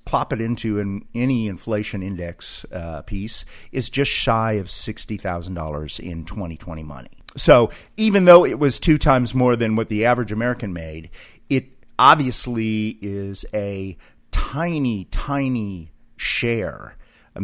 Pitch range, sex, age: 95-120 Hz, male, 40-59